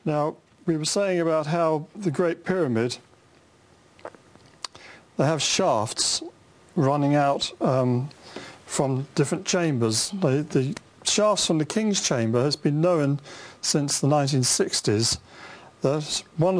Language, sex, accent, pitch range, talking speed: English, male, British, 130-165 Hz, 120 wpm